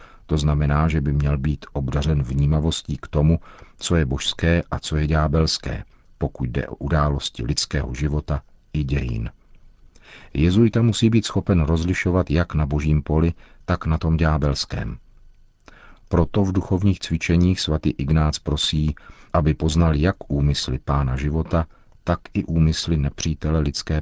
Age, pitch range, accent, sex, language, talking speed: 50-69, 70-85 Hz, native, male, Czech, 140 wpm